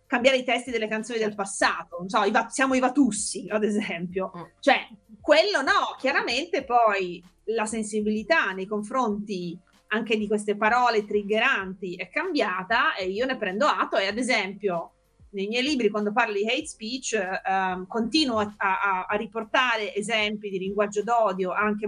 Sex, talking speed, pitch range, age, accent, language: female, 155 wpm, 195-245 Hz, 30-49, native, Italian